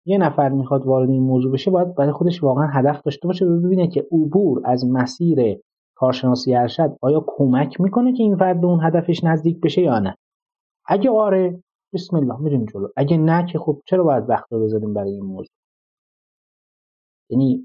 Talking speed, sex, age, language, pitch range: 175 wpm, male, 30-49, Persian, 130-170 Hz